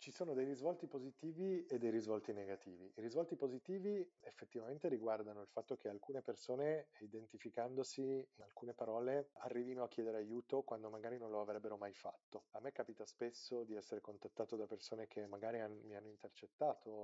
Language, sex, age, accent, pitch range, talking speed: Italian, male, 30-49, native, 115-155 Hz, 170 wpm